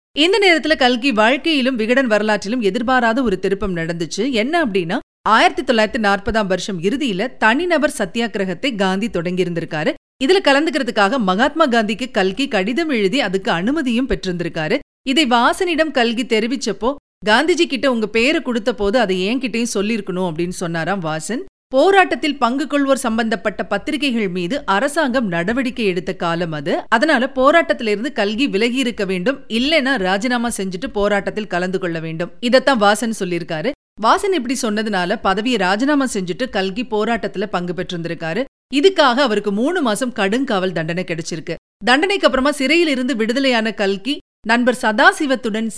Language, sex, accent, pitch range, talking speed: Tamil, female, native, 195-270 Hz, 130 wpm